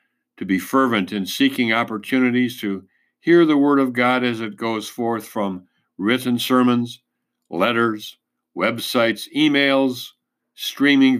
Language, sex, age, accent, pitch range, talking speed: English, male, 60-79, American, 100-130 Hz, 125 wpm